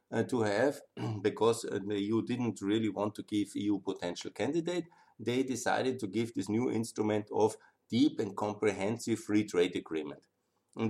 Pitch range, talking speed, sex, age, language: 95-115 Hz, 165 wpm, male, 50-69, German